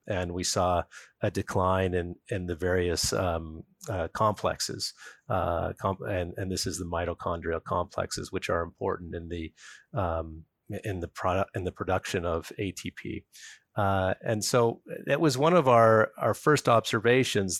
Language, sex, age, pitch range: English, male, 40-59, 90-110 Hz